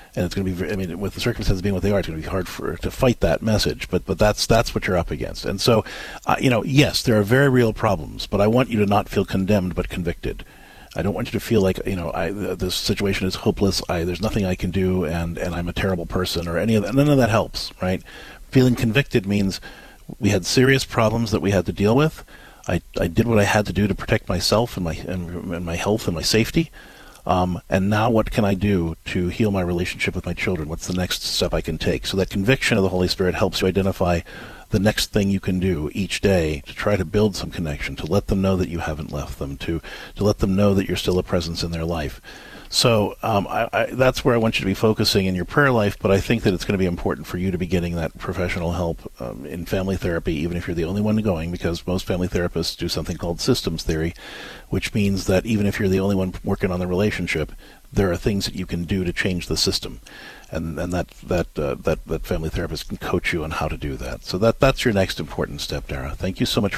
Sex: male